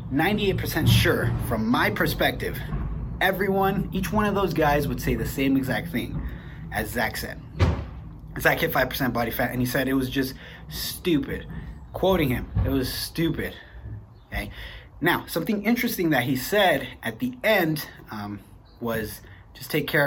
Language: English